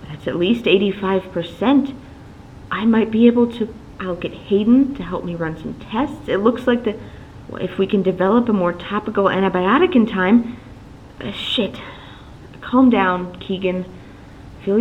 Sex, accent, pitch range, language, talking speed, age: female, American, 165-225 Hz, English, 160 wpm, 30-49